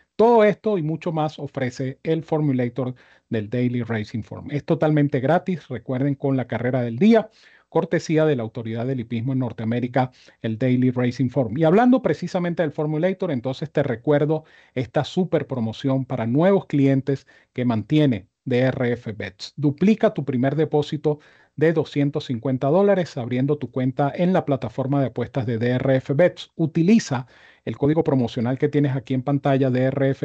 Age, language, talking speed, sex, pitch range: 40-59, Spanish, 155 wpm, male, 130-160 Hz